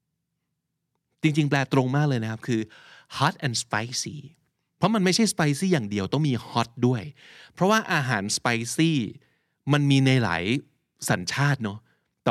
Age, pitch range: 20-39, 110-155 Hz